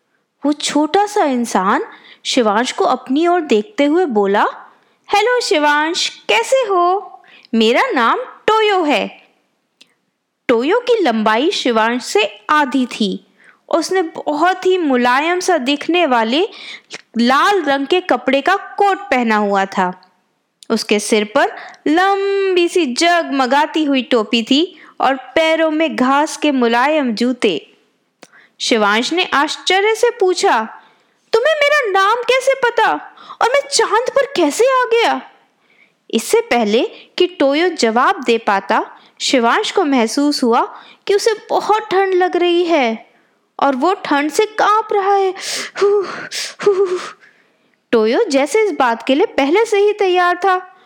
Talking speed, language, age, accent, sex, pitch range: 135 wpm, Hindi, 20-39, native, female, 260-390 Hz